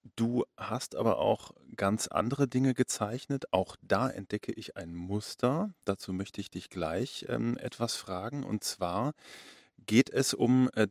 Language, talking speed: German, 155 wpm